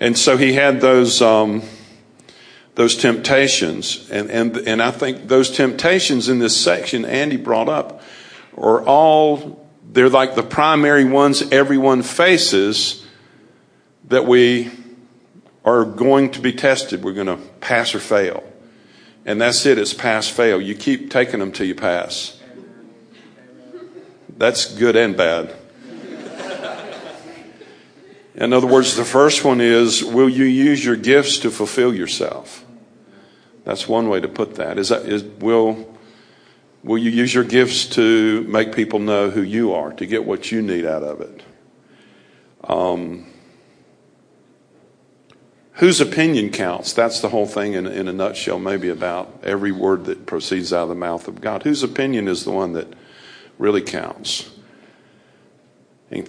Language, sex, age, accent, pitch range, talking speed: English, male, 50-69, American, 110-135 Hz, 145 wpm